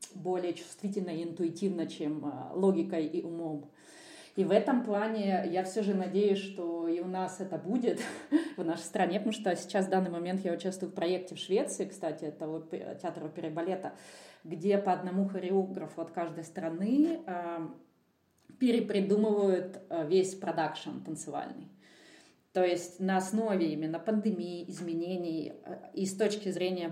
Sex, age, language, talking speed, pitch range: female, 30-49, Russian, 145 wpm, 170-200 Hz